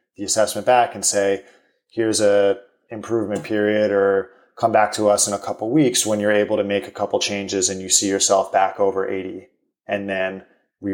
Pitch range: 100-105 Hz